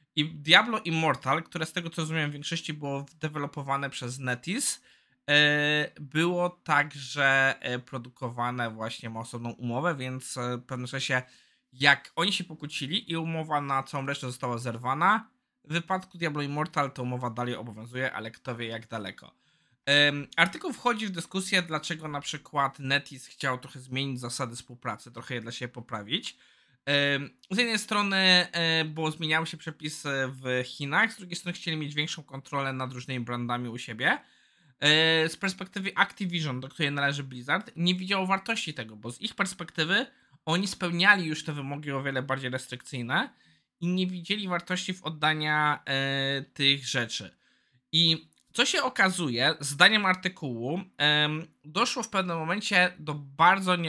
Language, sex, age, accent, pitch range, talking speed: Polish, male, 20-39, native, 130-170 Hz, 145 wpm